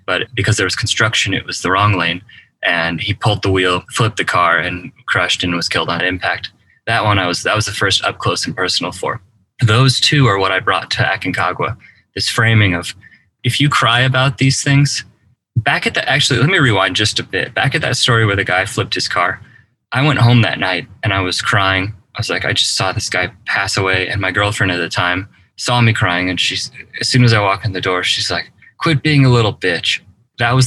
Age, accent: 20-39, American